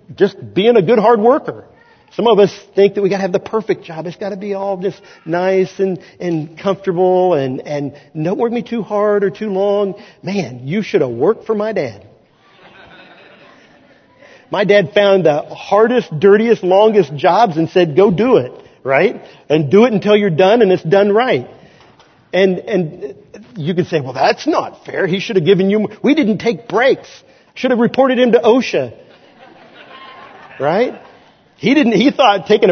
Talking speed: 185 wpm